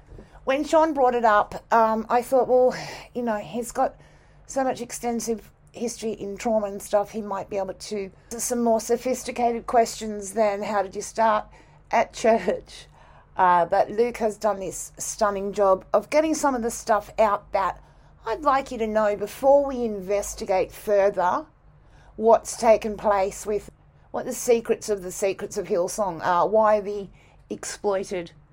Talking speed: 165 wpm